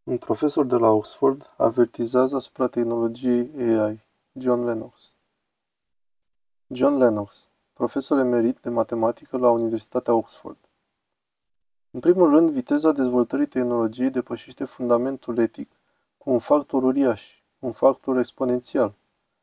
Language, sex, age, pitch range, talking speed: Romanian, male, 20-39, 120-140 Hz, 110 wpm